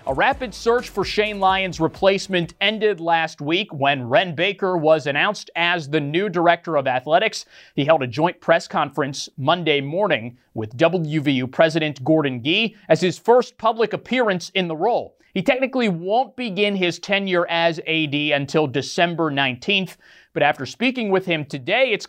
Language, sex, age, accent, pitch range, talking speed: English, male, 30-49, American, 155-200 Hz, 165 wpm